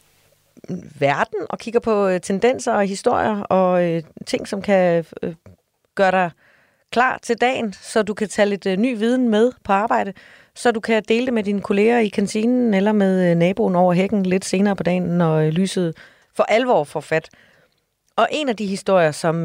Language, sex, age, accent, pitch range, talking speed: Danish, female, 30-49, native, 165-215 Hz, 195 wpm